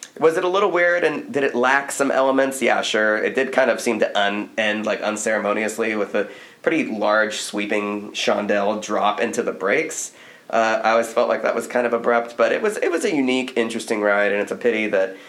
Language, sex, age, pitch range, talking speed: English, male, 20-39, 105-120 Hz, 225 wpm